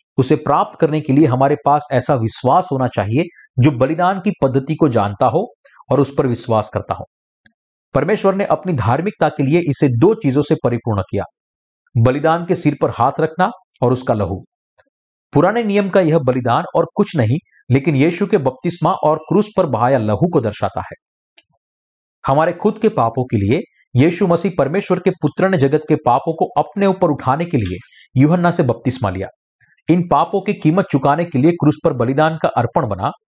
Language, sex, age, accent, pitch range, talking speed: Hindi, male, 50-69, native, 125-170 Hz, 185 wpm